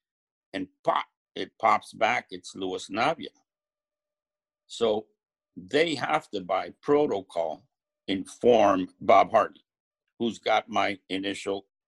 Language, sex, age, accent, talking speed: English, male, 60-79, American, 105 wpm